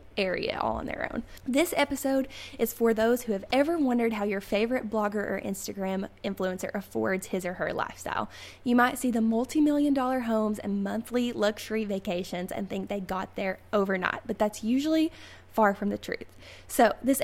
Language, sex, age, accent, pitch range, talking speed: English, female, 10-29, American, 200-250 Hz, 180 wpm